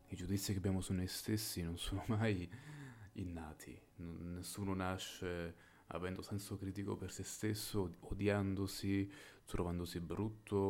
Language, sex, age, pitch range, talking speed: Italian, male, 30-49, 90-110 Hz, 125 wpm